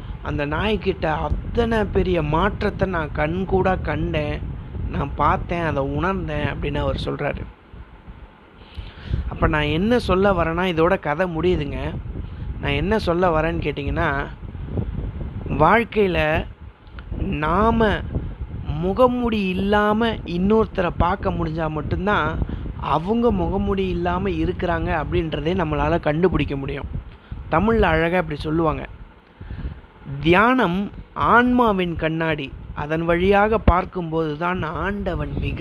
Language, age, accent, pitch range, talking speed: Tamil, 30-49, native, 150-195 Hz, 95 wpm